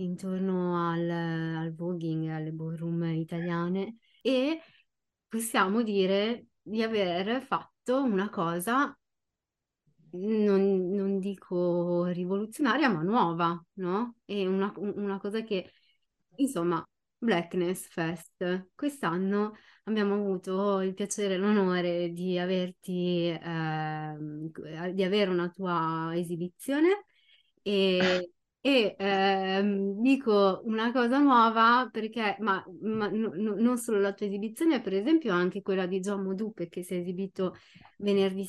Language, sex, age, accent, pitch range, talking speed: Italian, female, 20-39, native, 175-215 Hz, 115 wpm